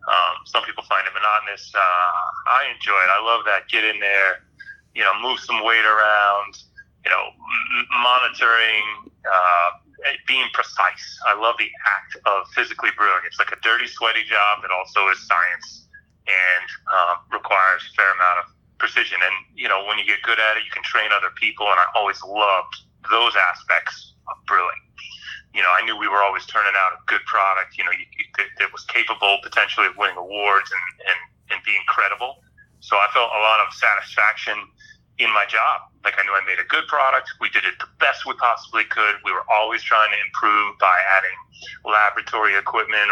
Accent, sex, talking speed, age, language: American, male, 190 wpm, 30-49, English